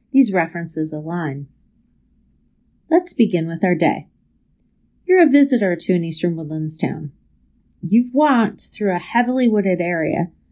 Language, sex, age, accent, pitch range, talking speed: English, female, 30-49, American, 170-245 Hz, 125 wpm